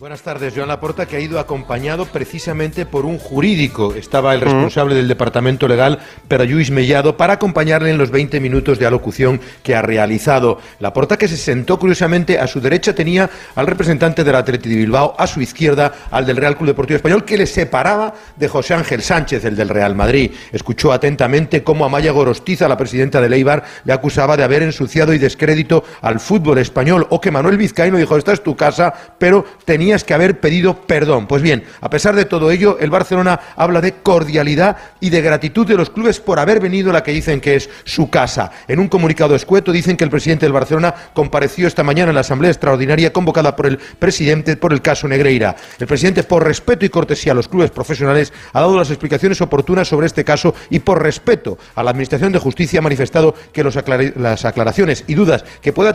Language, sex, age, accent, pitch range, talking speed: Spanish, male, 40-59, Spanish, 135-175 Hz, 205 wpm